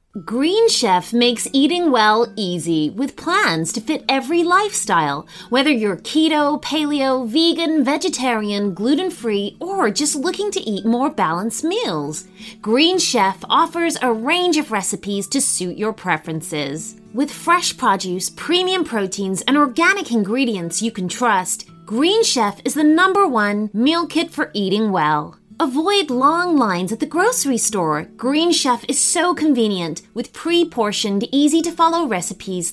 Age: 30-49